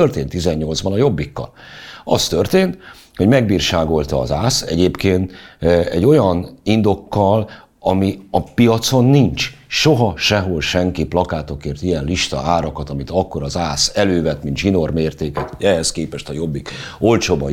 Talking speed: 125 wpm